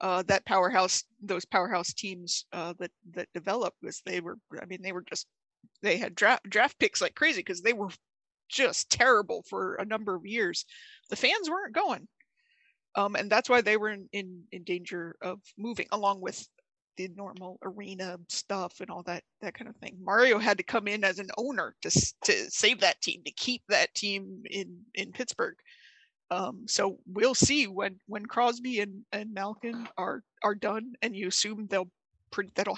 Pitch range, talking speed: 190-225 Hz, 190 wpm